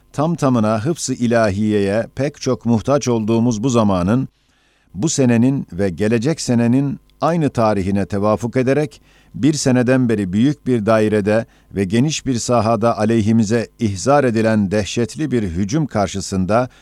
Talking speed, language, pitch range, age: 130 wpm, Turkish, 105-130 Hz, 50-69